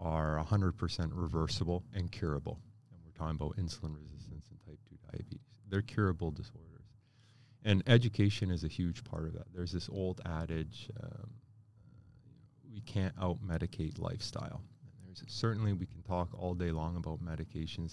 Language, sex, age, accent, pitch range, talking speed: English, male, 30-49, American, 85-115 Hz, 155 wpm